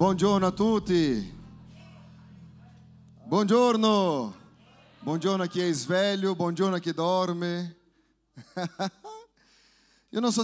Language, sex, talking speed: Italian, male, 90 wpm